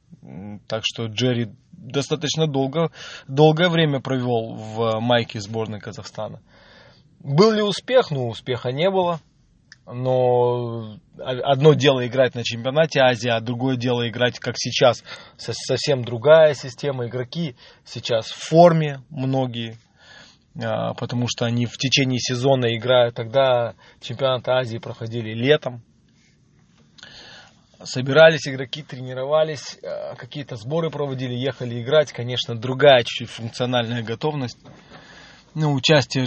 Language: Russian